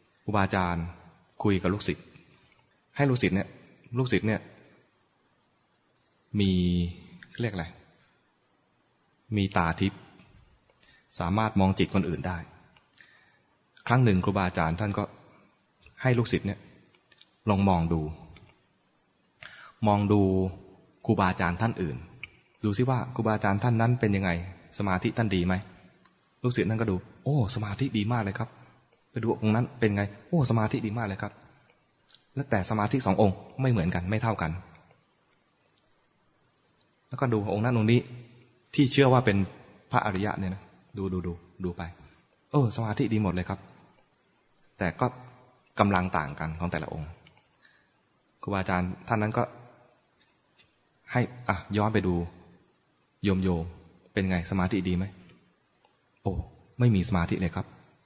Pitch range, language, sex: 90-115 Hz, English, male